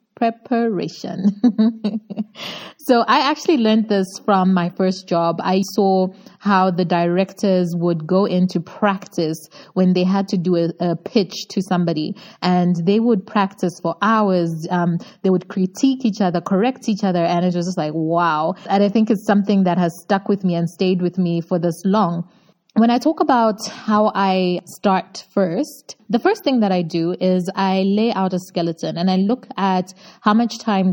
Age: 20-39